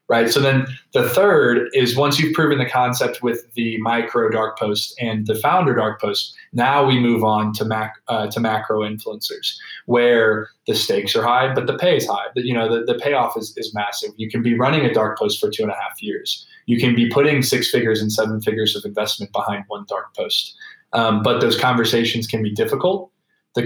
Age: 20-39